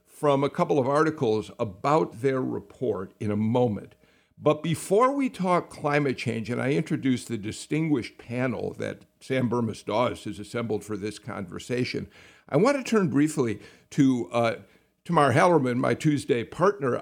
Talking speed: 150 wpm